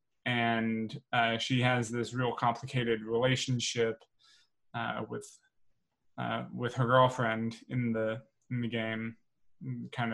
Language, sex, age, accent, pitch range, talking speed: English, male, 20-39, American, 120-145 Hz, 120 wpm